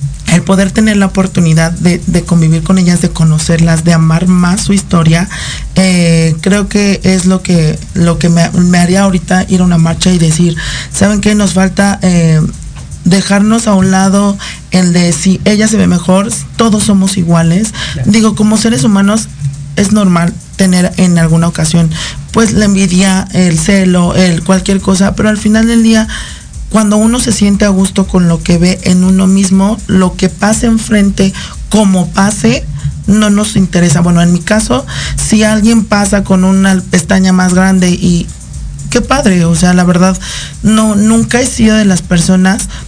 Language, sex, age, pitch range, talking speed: Spanish, male, 40-59, 175-200 Hz, 175 wpm